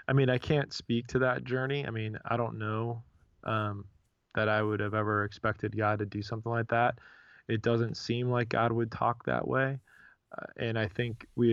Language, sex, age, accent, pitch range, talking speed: English, male, 20-39, American, 105-120 Hz, 210 wpm